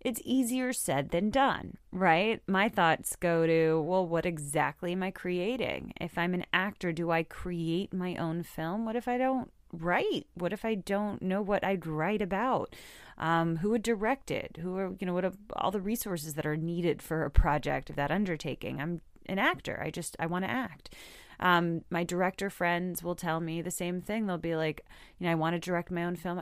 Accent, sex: American, female